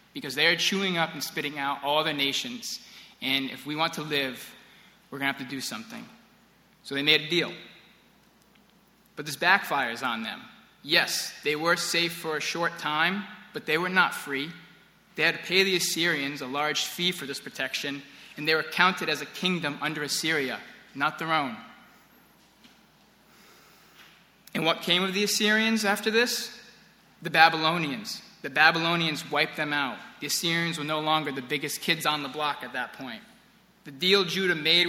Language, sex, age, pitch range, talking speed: English, male, 20-39, 145-185 Hz, 180 wpm